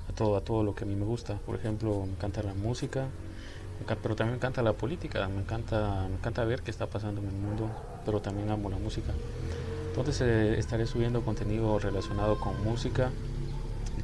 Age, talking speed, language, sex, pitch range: 30-49, 200 wpm, English, male, 105-115 Hz